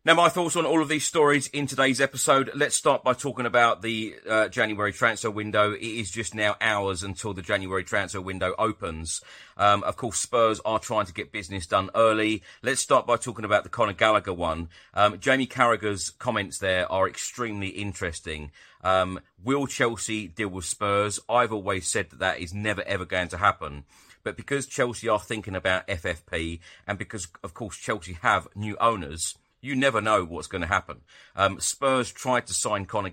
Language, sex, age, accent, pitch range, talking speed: English, male, 40-59, British, 90-115 Hz, 190 wpm